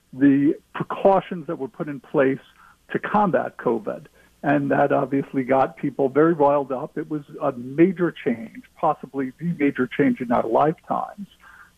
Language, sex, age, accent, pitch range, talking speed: English, male, 50-69, American, 140-185 Hz, 155 wpm